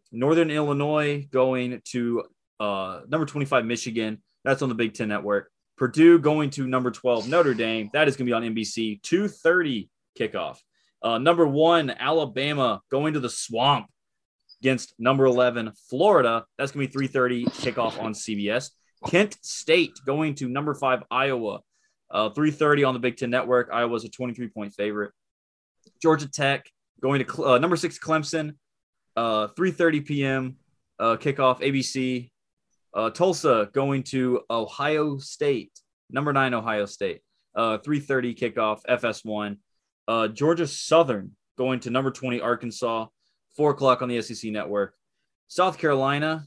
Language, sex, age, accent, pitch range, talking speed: English, male, 20-39, American, 115-150 Hz, 145 wpm